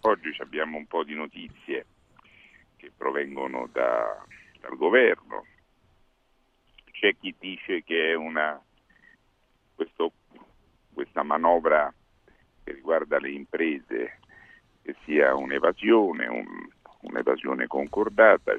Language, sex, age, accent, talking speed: Italian, male, 50-69, native, 95 wpm